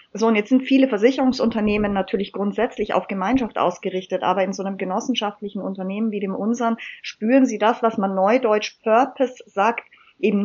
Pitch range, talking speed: 205-245 Hz, 165 wpm